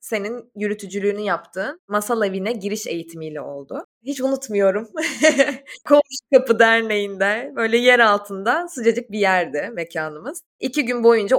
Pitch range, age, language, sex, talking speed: 195-255 Hz, 20-39, Turkish, female, 120 wpm